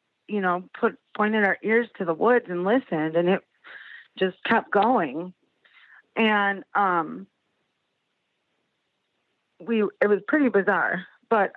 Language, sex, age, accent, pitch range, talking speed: English, female, 40-59, American, 185-235 Hz, 125 wpm